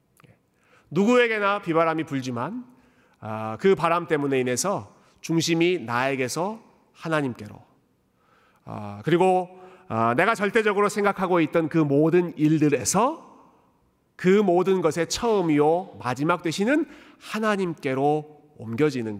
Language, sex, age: Korean, male, 40-59